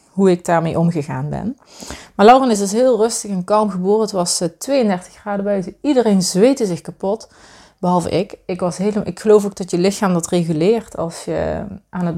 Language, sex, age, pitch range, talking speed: Dutch, female, 30-49, 175-205 Hz, 195 wpm